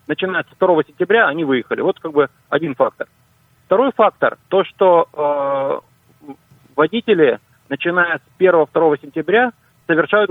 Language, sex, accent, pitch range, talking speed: Russian, male, native, 140-190 Hz, 135 wpm